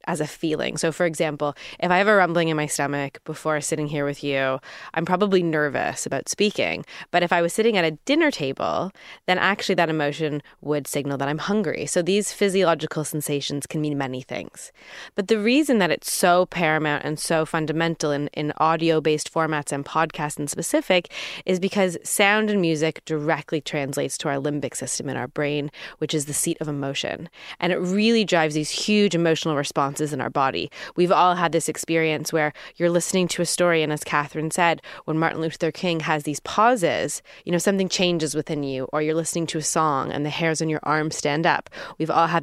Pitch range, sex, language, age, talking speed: 150-180 Hz, female, English, 20-39, 205 wpm